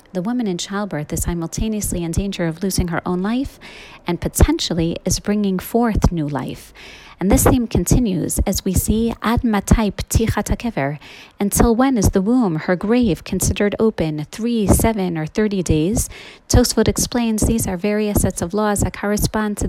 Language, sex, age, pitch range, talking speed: English, female, 30-49, 170-215 Hz, 160 wpm